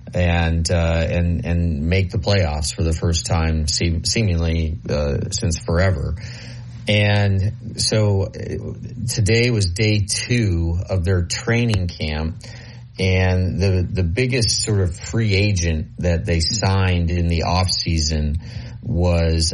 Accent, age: American, 30-49